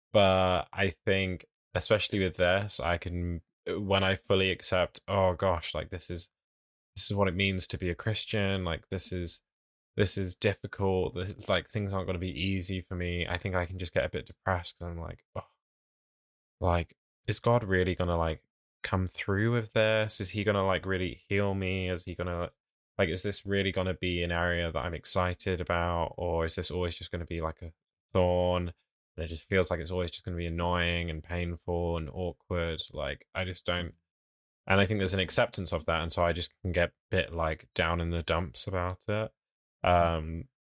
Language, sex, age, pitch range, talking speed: English, male, 10-29, 85-95 Hz, 215 wpm